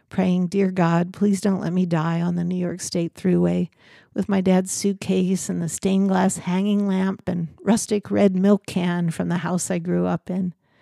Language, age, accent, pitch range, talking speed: English, 50-69, American, 170-190 Hz, 200 wpm